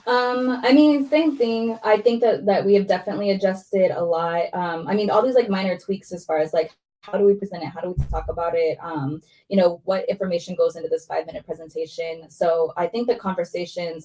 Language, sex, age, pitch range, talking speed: English, female, 20-39, 160-205 Hz, 230 wpm